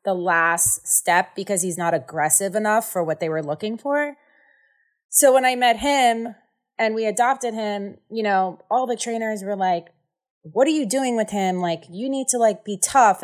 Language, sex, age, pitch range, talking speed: English, female, 20-39, 185-255 Hz, 195 wpm